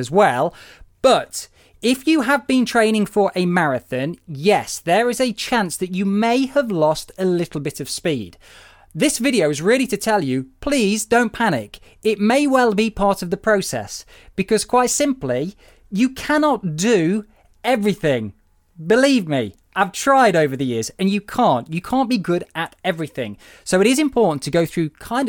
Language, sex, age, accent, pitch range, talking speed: English, male, 20-39, British, 155-230 Hz, 180 wpm